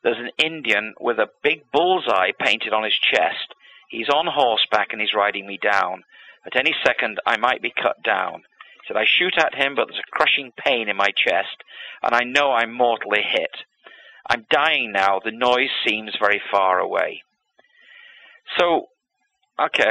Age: 40-59